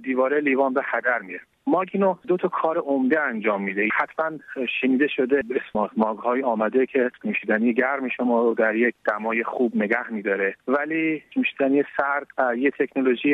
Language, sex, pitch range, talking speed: Persian, male, 115-145 Hz, 155 wpm